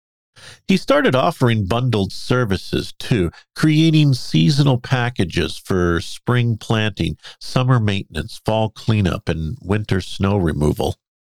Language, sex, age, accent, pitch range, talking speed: English, male, 50-69, American, 100-145 Hz, 105 wpm